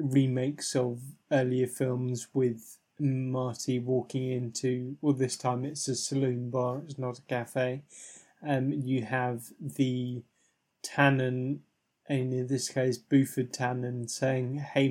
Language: English